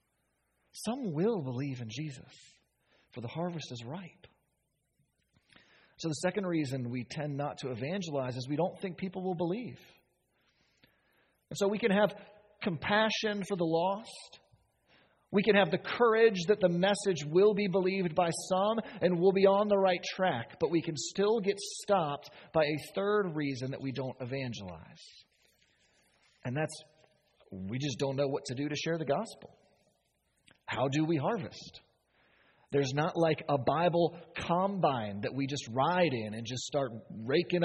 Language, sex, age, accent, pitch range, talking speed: English, male, 40-59, American, 145-200 Hz, 160 wpm